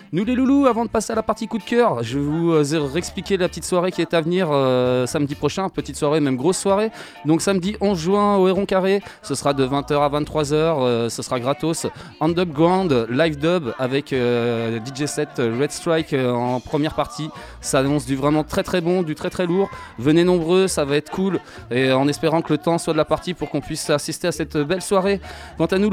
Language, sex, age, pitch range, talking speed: French, male, 20-39, 140-180 Hz, 225 wpm